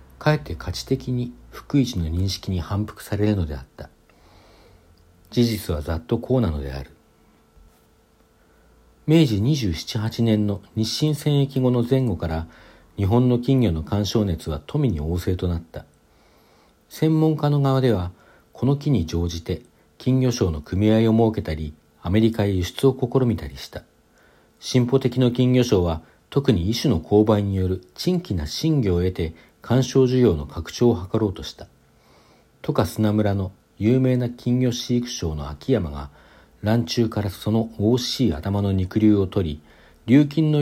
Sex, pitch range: male, 85-125 Hz